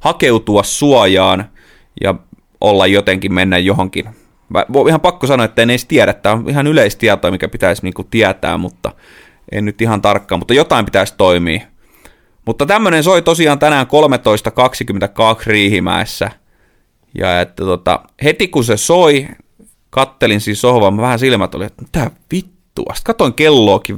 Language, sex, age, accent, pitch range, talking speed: Finnish, male, 30-49, native, 105-150 Hz, 140 wpm